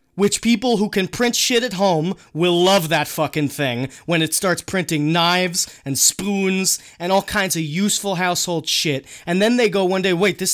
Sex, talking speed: male, 200 wpm